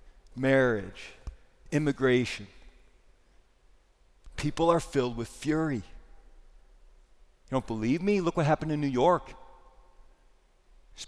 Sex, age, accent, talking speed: male, 40-59, American, 95 wpm